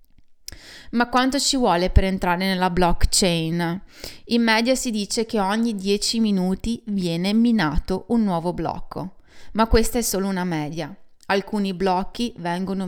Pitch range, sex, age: 170-210 Hz, female, 20-39